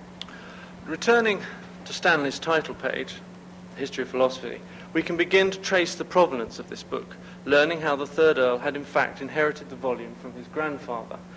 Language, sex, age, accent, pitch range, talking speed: English, male, 50-69, British, 125-160 Hz, 170 wpm